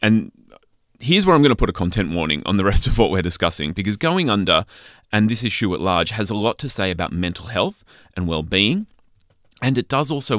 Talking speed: 225 wpm